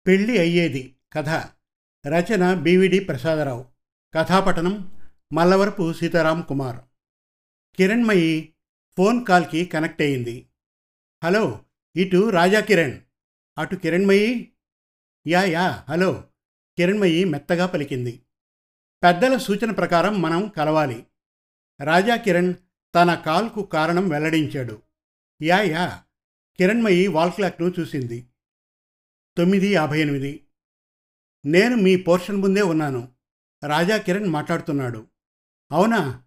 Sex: male